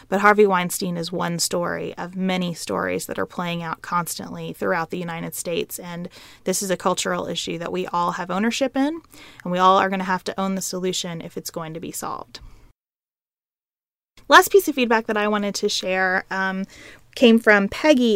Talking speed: 200 wpm